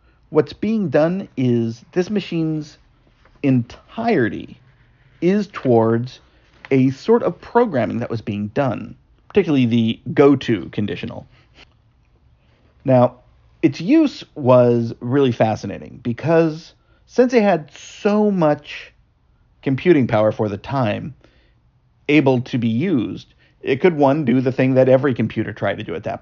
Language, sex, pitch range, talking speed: English, male, 115-160 Hz, 130 wpm